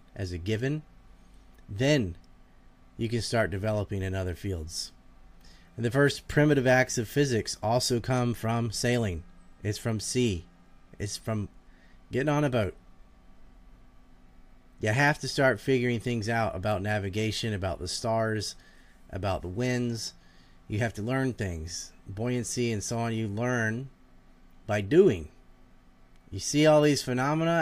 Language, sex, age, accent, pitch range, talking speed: English, male, 30-49, American, 90-120 Hz, 140 wpm